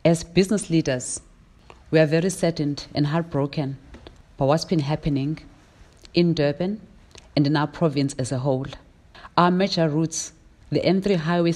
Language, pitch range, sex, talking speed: English, 140-170 Hz, female, 145 wpm